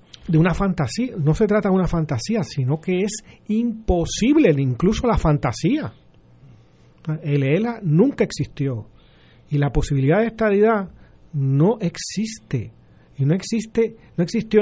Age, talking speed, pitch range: 40-59, 130 wpm, 135-180 Hz